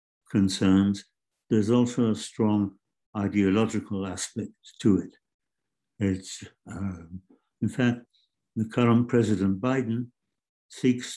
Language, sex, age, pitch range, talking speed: English, male, 60-79, 95-120 Hz, 95 wpm